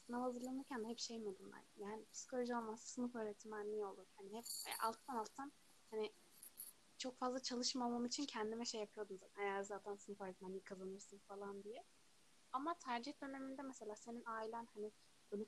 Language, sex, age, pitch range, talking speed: Turkish, female, 20-39, 200-245 Hz, 150 wpm